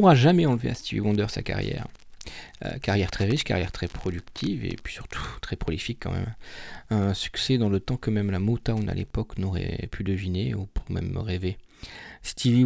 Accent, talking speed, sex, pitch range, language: French, 195 wpm, male, 100-120 Hz, French